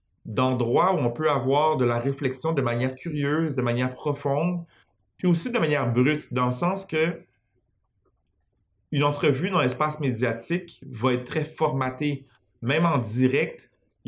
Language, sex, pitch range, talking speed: French, male, 125-155 Hz, 155 wpm